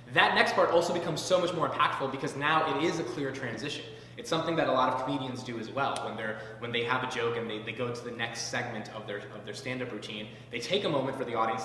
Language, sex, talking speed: English, male, 280 wpm